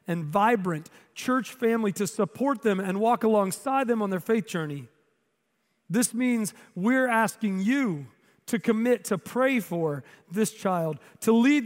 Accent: American